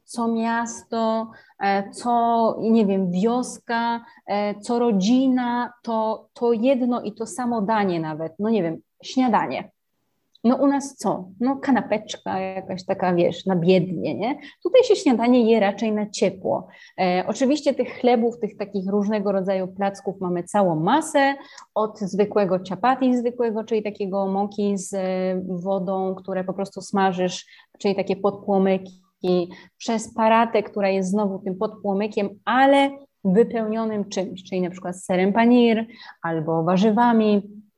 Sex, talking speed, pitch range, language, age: female, 130 wpm, 190-235 Hz, Polish, 30-49